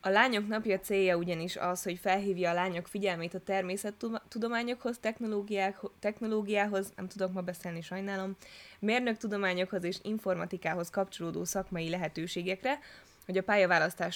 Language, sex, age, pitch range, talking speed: Hungarian, female, 20-39, 175-205 Hz, 125 wpm